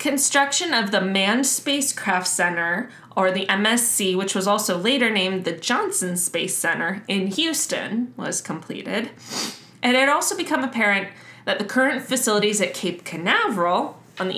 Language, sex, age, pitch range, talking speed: English, female, 20-39, 180-255 Hz, 150 wpm